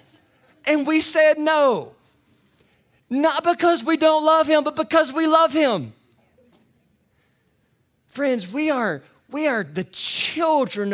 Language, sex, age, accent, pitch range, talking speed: English, male, 40-59, American, 160-250 Hz, 120 wpm